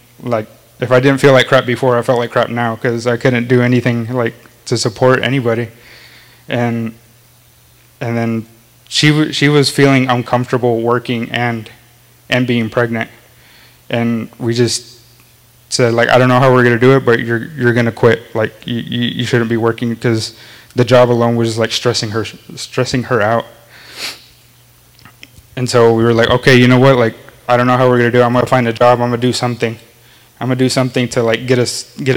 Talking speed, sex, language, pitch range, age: 205 wpm, male, English, 115-125 Hz, 20-39